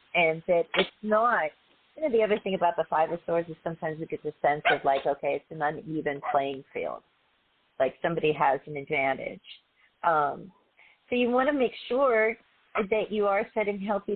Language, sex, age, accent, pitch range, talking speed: English, female, 40-59, American, 165-220 Hz, 190 wpm